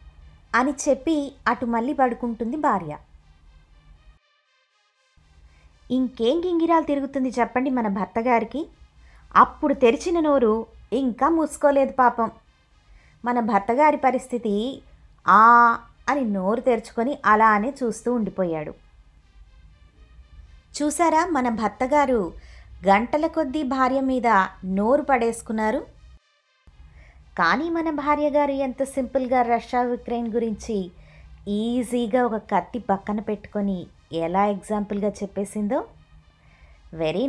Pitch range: 200-275 Hz